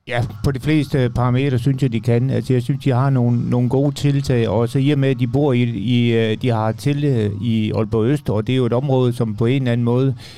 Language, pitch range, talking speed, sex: Danish, 110-130 Hz, 265 wpm, male